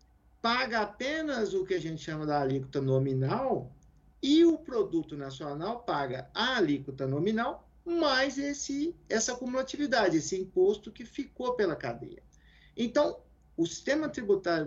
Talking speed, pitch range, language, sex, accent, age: 130 wpm, 165-270 Hz, Portuguese, male, Brazilian, 50-69